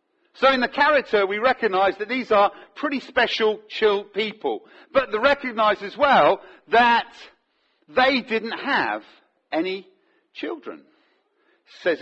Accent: British